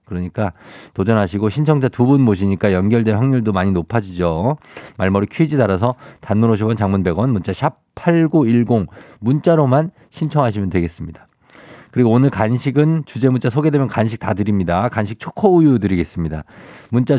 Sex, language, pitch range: male, Korean, 100-140 Hz